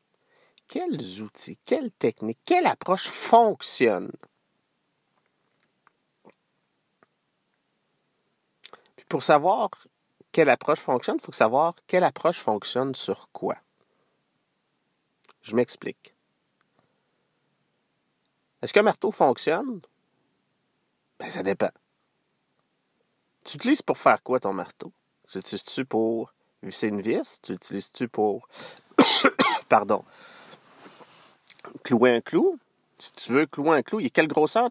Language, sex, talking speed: French, male, 105 wpm